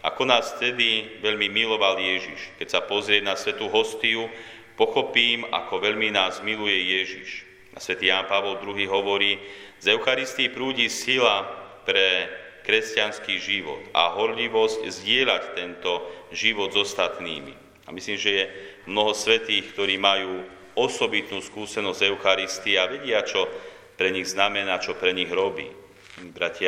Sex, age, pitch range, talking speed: male, 40-59, 95-125 Hz, 135 wpm